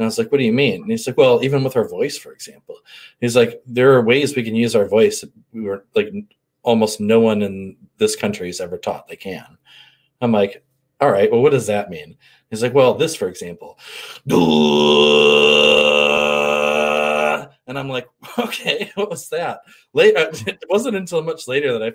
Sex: male